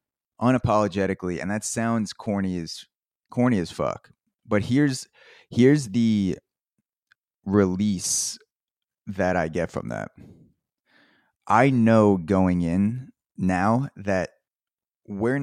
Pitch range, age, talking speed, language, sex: 90-110 Hz, 20-39, 100 wpm, English, male